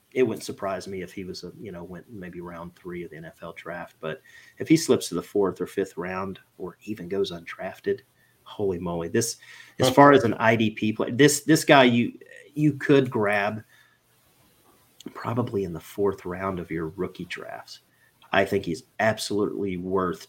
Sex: male